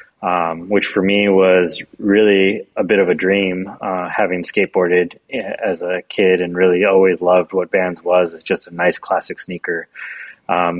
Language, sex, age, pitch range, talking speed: English, male, 20-39, 90-100 Hz, 170 wpm